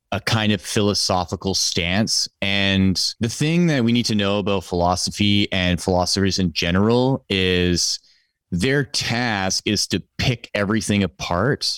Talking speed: 140 wpm